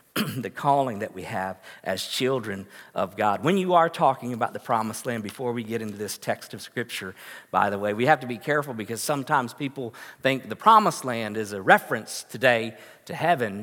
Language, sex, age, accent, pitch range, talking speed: English, male, 50-69, American, 125-190 Hz, 205 wpm